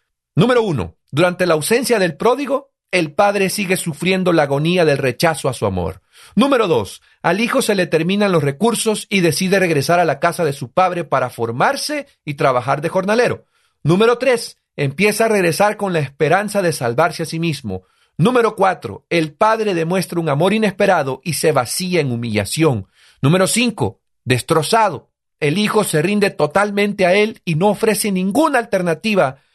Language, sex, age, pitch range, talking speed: Spanish, male, 40-59, 140-200 Hz, 170 wpm